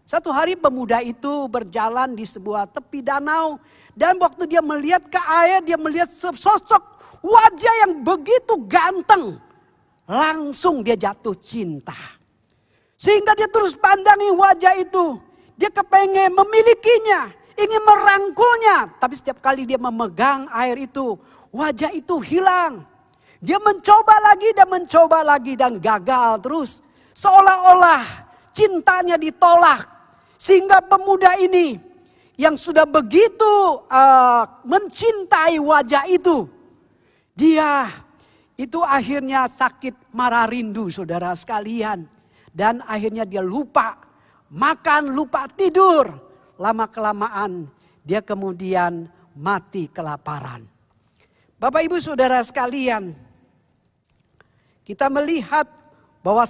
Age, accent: 40-59, native